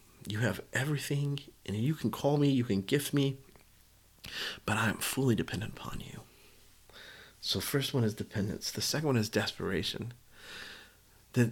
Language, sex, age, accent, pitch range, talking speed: English, male, 30-49, American, 110-135 Hz, 155 wpm